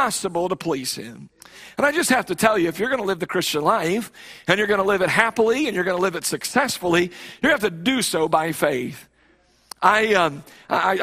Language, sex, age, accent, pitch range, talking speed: English, male, 50-69, American, 190-270 Hz, 235 wpm